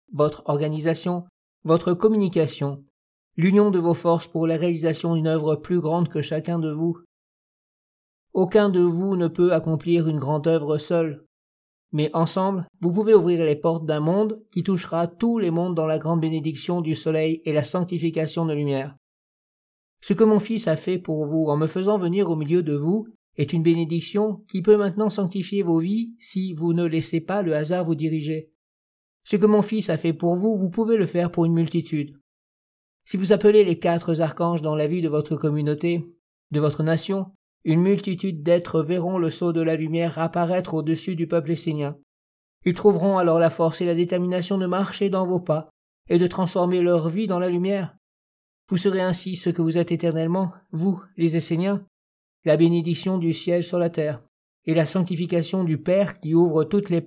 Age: 50-69